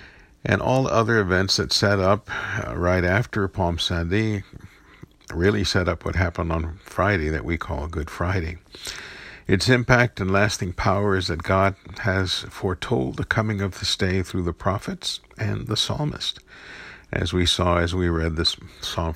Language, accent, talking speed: English, American, 165 wpm